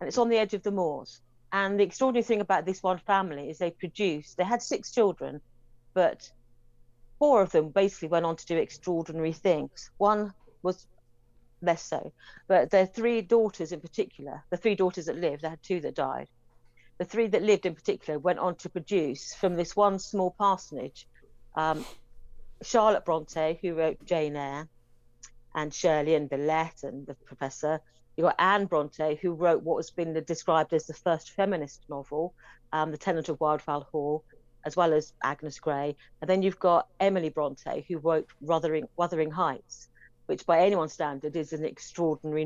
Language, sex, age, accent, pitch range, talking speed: English, female, 50-69, British, 145-185 Hz, 180 wpm